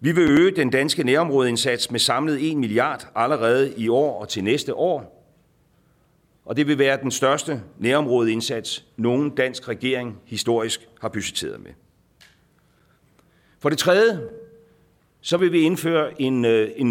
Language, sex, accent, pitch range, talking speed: Danish, male, native, 115-155 Hz, 140 wpm